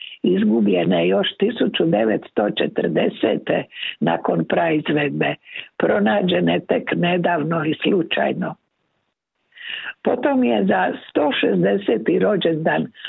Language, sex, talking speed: Croatian, female, 80 wpm